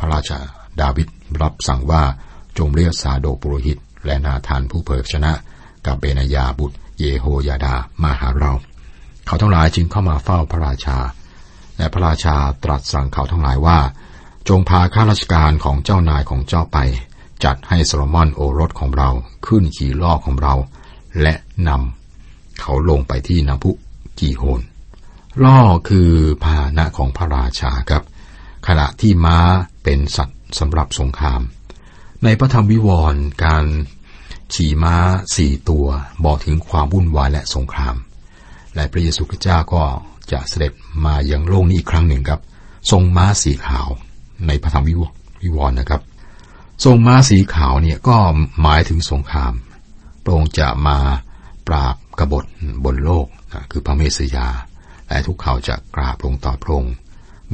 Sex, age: male, 60-79